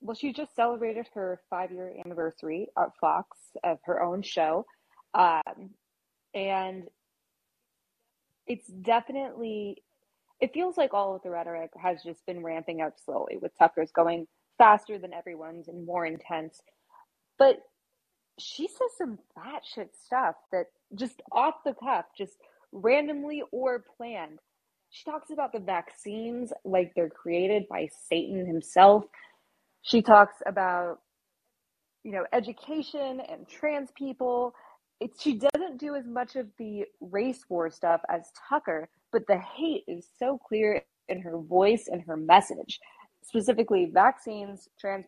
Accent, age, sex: American, 20-39, female